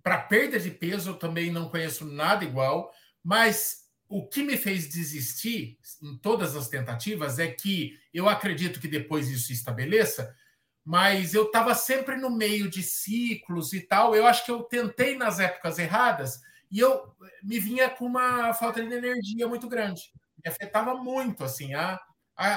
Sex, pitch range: male, 160-225 Hz